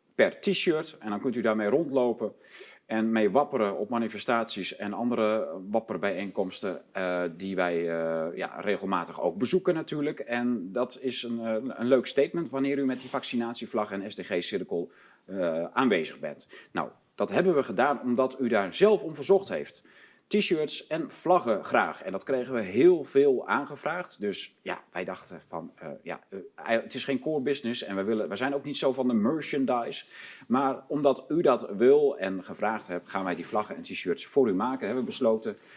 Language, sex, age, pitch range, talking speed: Dutch, male, 40-59, 110-140 Hz, 185 wpm